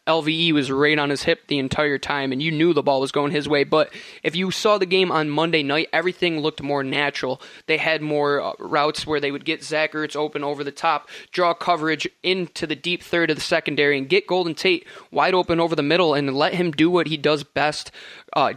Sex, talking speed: male, 235 wpm